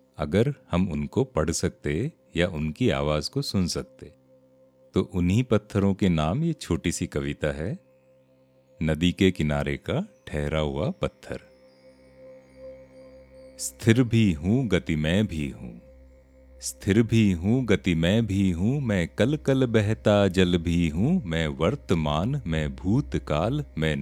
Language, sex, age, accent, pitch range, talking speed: Hindi, male, 40-59, native, 70-105 Hz, 135 wpm